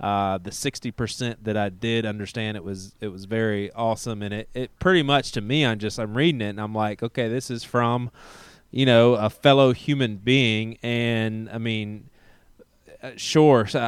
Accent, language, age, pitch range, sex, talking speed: American, English, 20-39, 105-120 Hz, male, 185 wpm